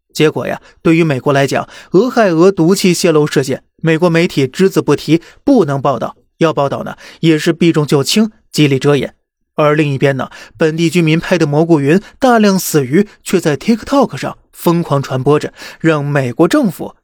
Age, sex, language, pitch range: 20-39, male, Chinese, 145-185 Hz